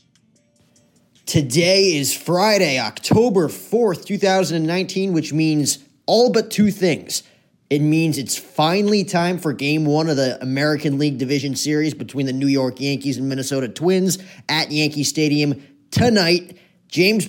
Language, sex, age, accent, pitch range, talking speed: English, male, 20-39, American, 140-170 Hz, 135 wpm